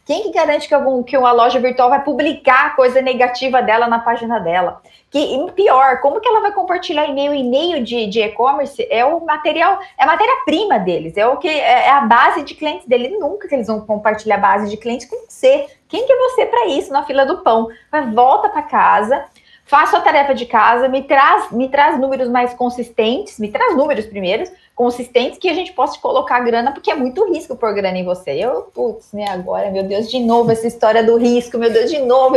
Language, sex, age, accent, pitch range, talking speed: Portuguese, female, 20-39, Brazilian, 235-300 Hz, 220 wpm